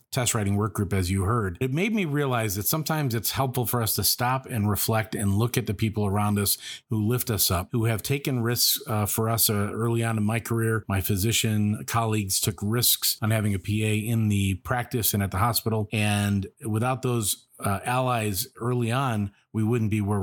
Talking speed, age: 215 wpm, 40-59